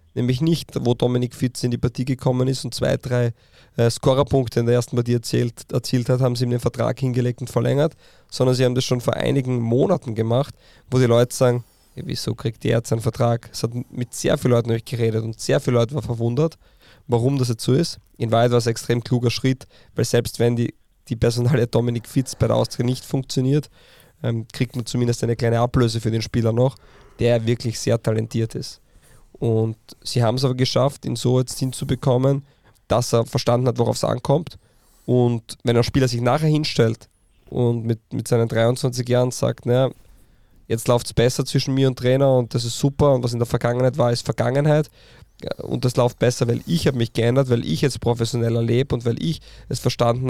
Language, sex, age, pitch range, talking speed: German, male, 20-39, 115-130 Hz, 210 wpm